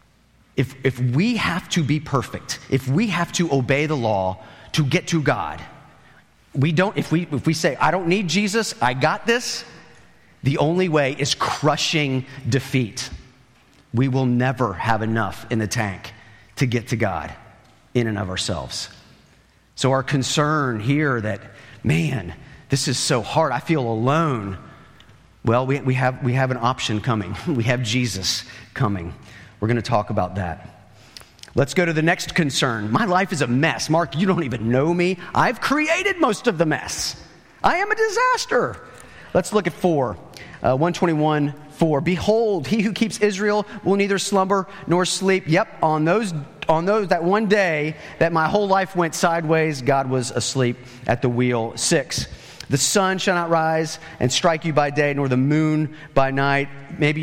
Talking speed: 175 wpm